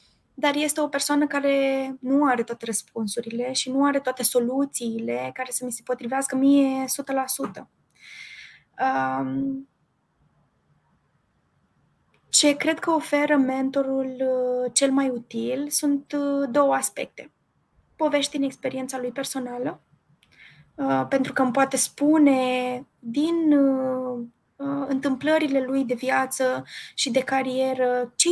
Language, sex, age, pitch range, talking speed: Romanian, female, 20-39, 245-275 Hz, 110 wpm